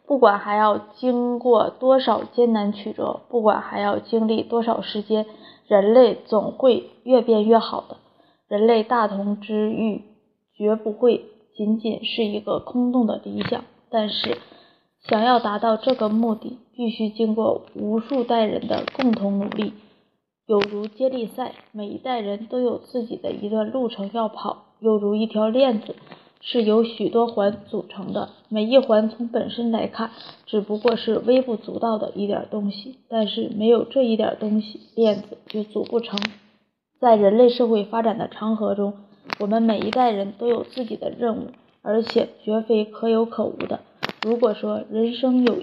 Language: Chinese